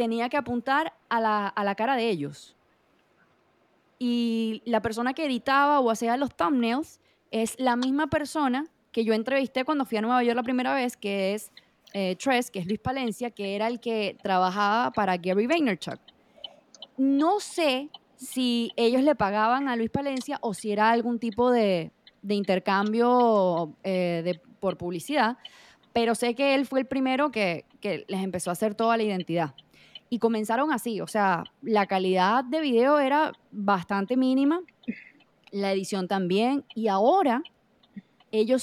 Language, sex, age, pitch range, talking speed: Spanish, female, 20-39, 210-270 Hz, 165 wpm